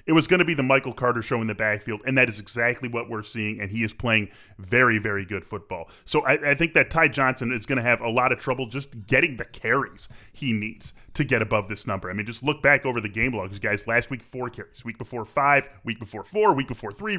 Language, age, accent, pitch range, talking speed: English, 20-39, American, 110-140 Hz, 265 wpm